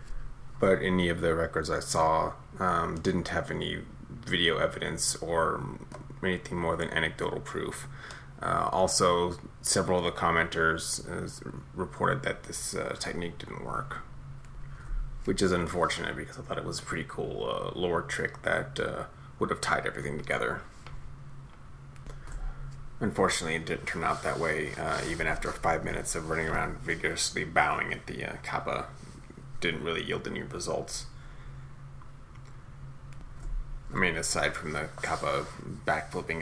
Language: English